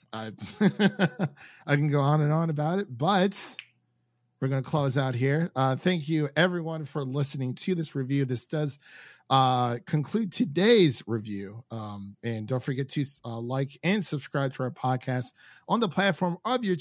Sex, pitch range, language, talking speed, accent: male, 120-160 Hz, English, 170 wpm, American